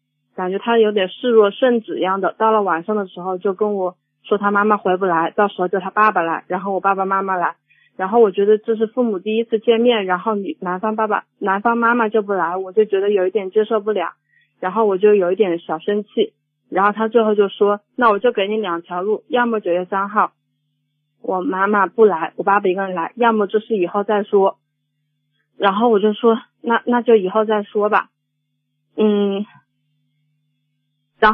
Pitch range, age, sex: 180-225 Hz, 20-39, female